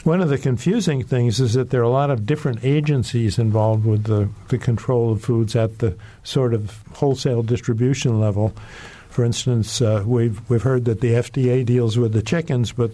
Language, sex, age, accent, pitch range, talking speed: English, male, 50-69, American, 115-135 Hz, 195 wpm